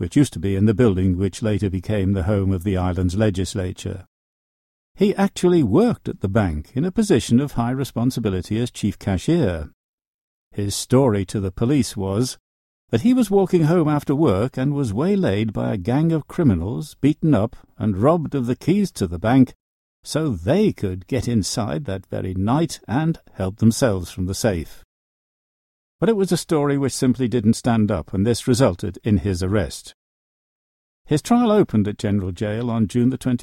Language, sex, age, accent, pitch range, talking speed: English, male, 60-79, British, 95-145 Hz, 180 wpm